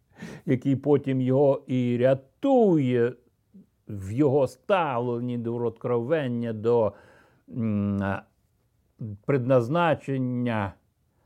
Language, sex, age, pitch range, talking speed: Ukrainian, male, 60-79, 110-135 Hz, 65 wpm